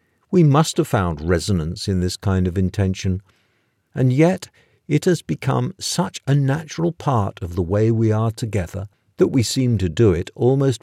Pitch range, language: 95-130 Hz, English